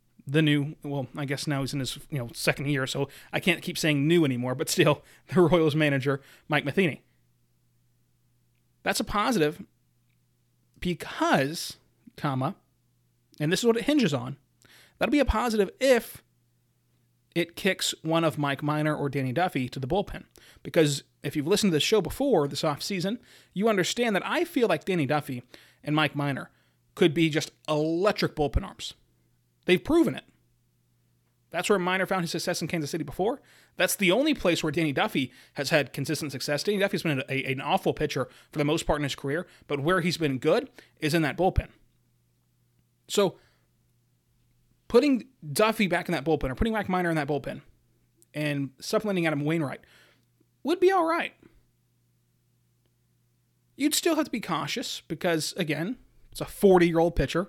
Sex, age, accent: male, 30-49, American